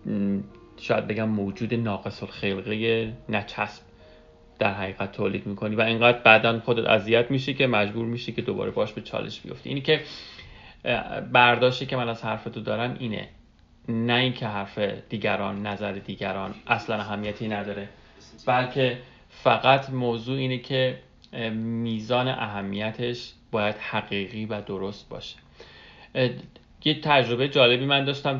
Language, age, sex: English, 30-49, male